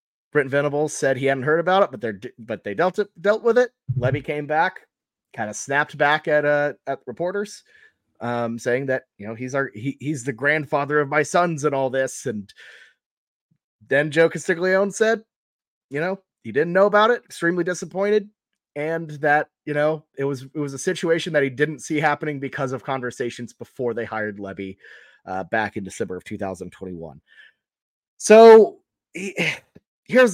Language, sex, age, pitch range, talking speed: English, male, 30-49, 130-180 Hz, 180 wpm